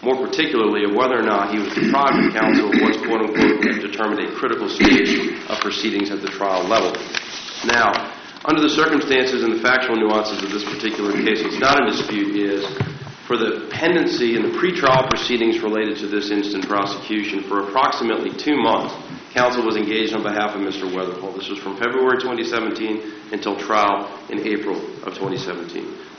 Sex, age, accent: male, 40-59, American